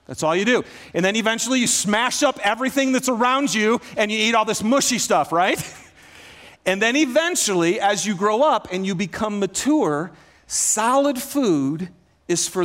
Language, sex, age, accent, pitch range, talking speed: English, male, 40-59, American, 180-260 Hz, 175 wpm